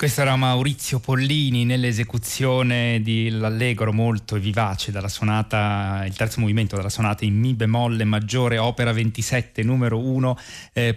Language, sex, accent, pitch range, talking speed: Italian, male, native, 110-125 Hz, 135 wpm